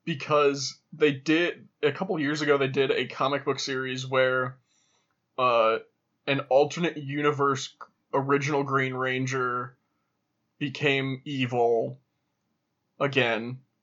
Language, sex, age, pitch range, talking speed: English, male, 20-39, 130-140 Hz, 105 wpm